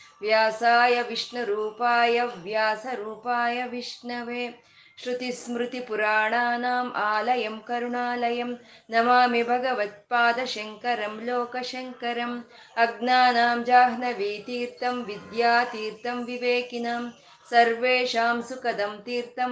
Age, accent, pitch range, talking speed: 20-39, native, 215-245 Hz, 45 wpm